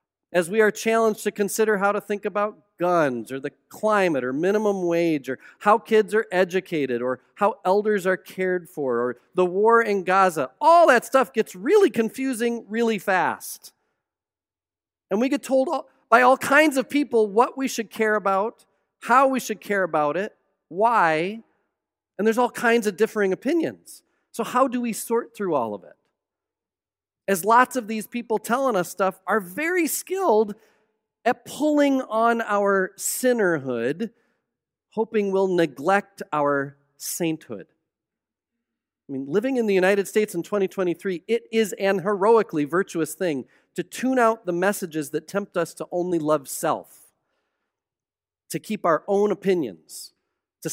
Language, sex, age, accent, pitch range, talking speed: English, male, 40-59, American, 185-235 Hz, 155 wpm